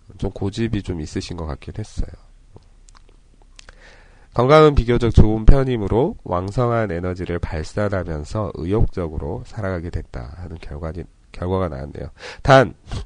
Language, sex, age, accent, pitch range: Korean, male, 40-59, native, 85-115 Hz